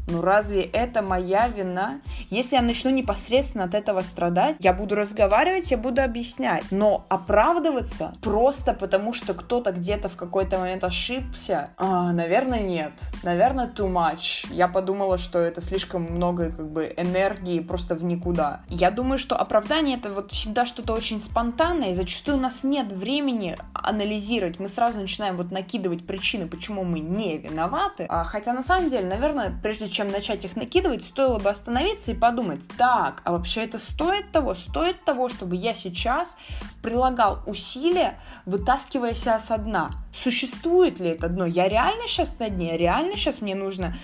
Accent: native